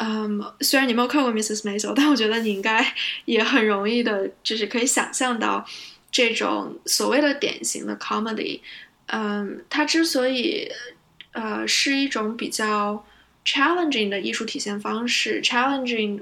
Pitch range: 215-260 Hz